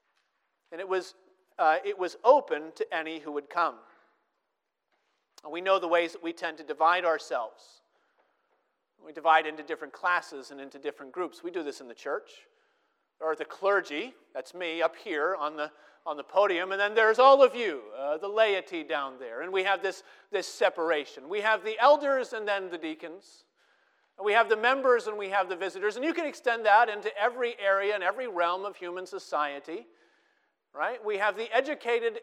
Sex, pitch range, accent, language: male, 180-250 Hz, American, English